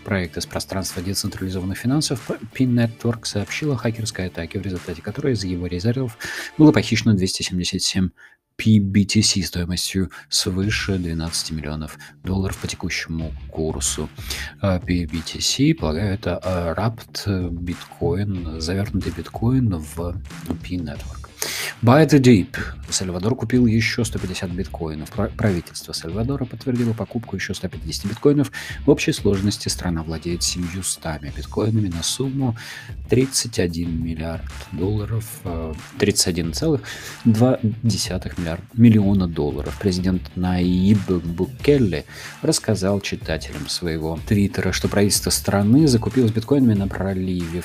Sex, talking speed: male, 100 wpm